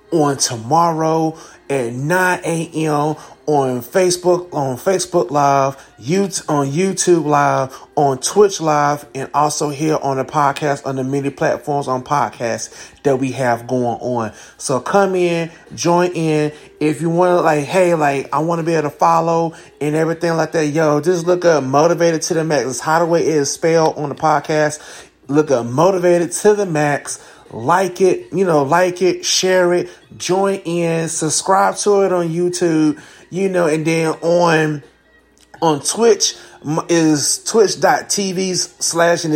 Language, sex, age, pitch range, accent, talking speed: English, male, 30-49, 145-180 Hz, American, 165 wpm